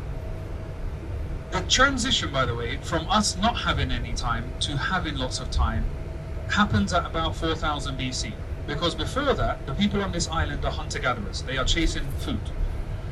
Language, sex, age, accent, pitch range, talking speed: English, male, 30-49, British, 80-110 Hz, 160 wpm